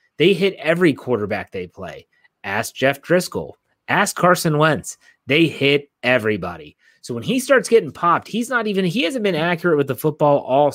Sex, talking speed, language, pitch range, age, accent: male, 180 wpm, English, 120-165 Hz, 30-49, American